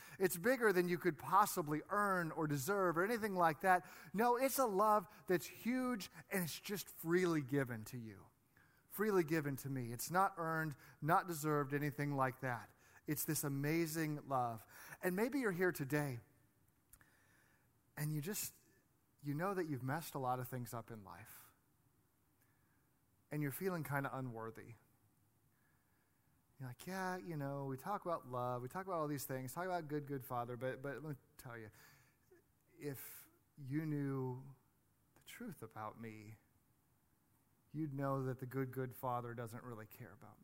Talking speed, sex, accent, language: 165 wpm, male, American, English